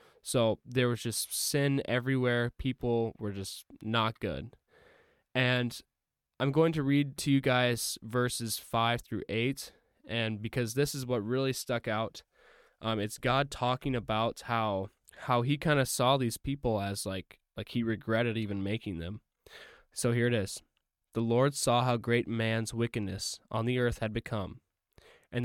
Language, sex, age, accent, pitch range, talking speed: English, male, 10-29, American, 110-130 Hz, 165 wpm